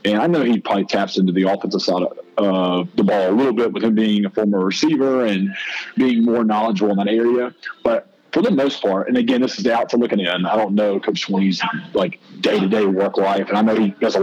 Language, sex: English, male